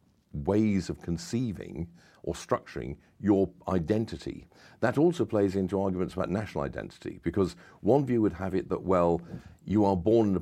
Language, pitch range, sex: English, 85-105 Hz, male